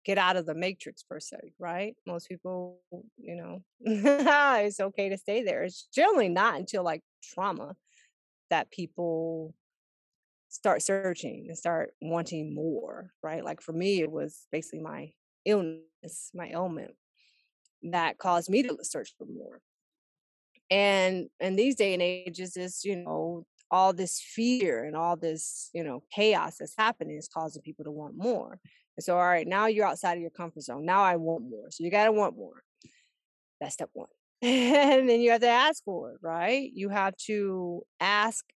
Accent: American